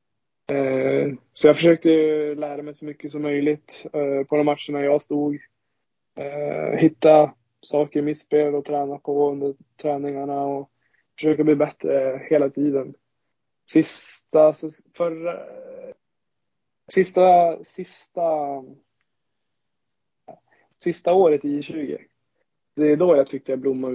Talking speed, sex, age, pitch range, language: 120 wpm, male, 20-39, 135-150 Hz, Swedish